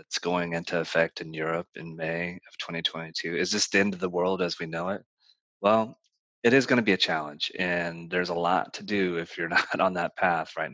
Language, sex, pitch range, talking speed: English, male, 90-110 Hz, 235 wpm